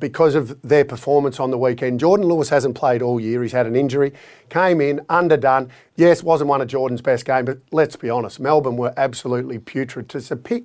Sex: male